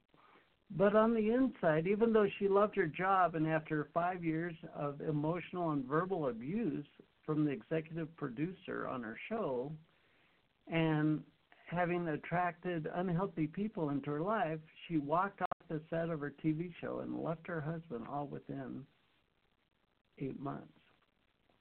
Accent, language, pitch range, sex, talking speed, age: American, English, 155-185 Hz, male, 140 wpm, 60-79